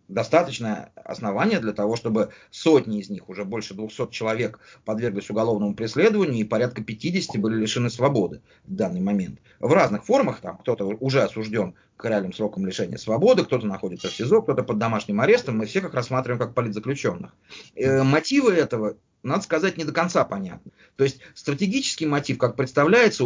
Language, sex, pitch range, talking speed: English, male, 115-155 Hz, 165 wpm